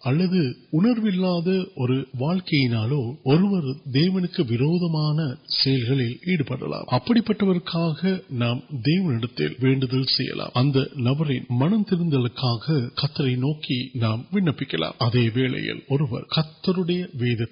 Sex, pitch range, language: male, 125-175 Hz, Urdu